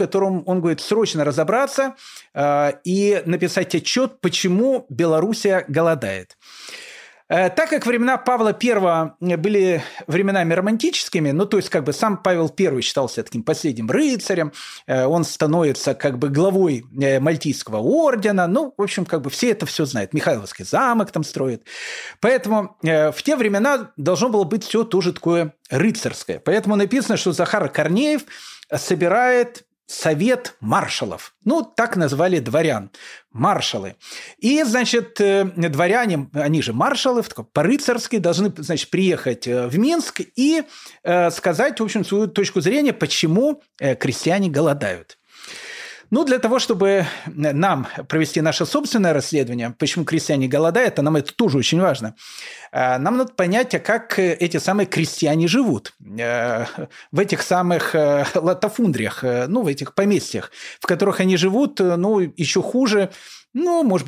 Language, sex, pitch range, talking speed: Russian, male, 155-220 Hz, 135 wpm